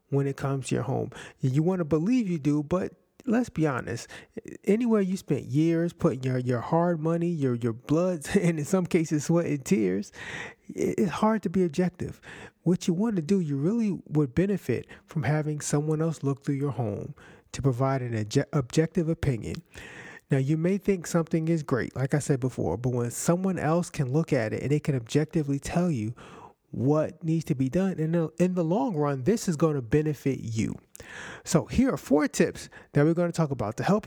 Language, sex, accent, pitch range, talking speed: English, male, American, 140-175 Hz, 205 wpm